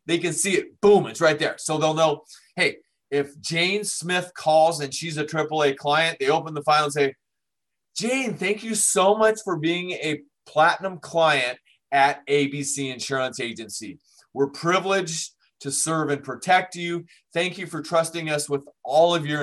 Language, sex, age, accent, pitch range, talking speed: English, male, 30-49, American, 140-180 Hz, 175 wpm